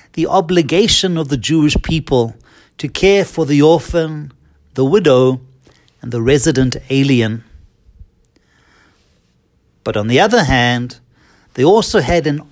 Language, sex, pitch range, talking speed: English, male, 120-170 Hz, 125 wpm